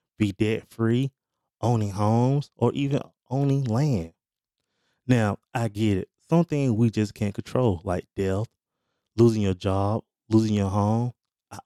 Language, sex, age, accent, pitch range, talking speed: English, male, 20-39, American, 105-125 Hz, 135 wpm